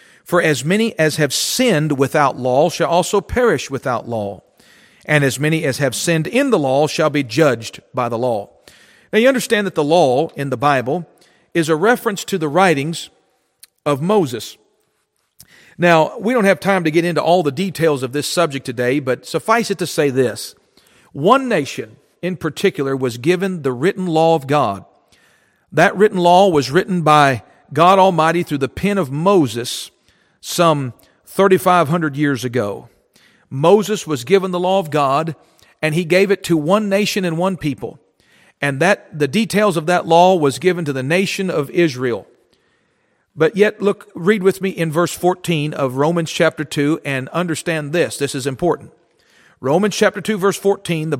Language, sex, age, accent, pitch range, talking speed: English, male, 40-59, American, 145-190 Hz, 175 wpm